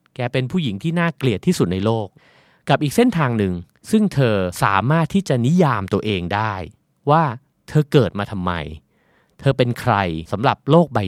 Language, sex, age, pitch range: Thai, male, 30-49, 100-150 Hz